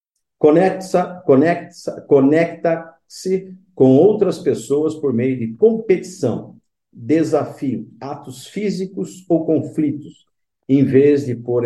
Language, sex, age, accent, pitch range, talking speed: Portuguese, male, 50-69, Brazilian, 115-170 Hz, 100 wpm